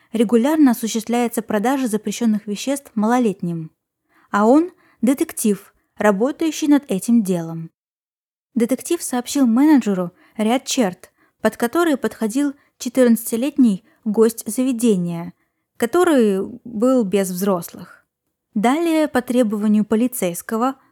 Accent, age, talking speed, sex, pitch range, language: native, 20-39, 95 wpm, female, 205-265 Hz, Russian